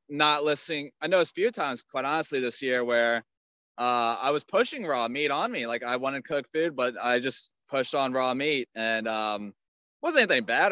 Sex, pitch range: male, 115-150 Hz